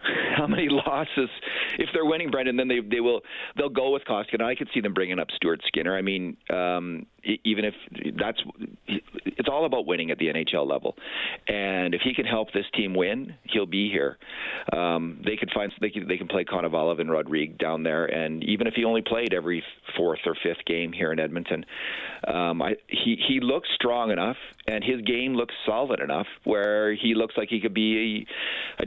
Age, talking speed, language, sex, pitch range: 40-59, 220 wpm, English, male, 95-125 Hz